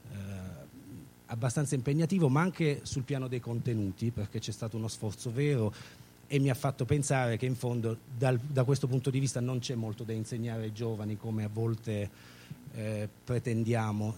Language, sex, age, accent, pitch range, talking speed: Italian, male, 30-49, native, 115-145 Hz, 170 wpm